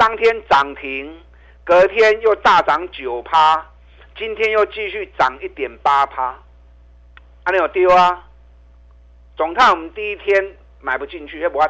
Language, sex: Chinese, male